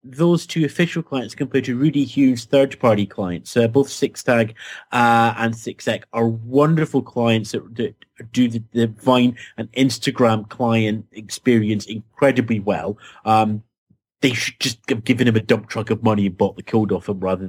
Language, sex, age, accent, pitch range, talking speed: English, male, 30-49, British, 110-140 Hz, 170 wpm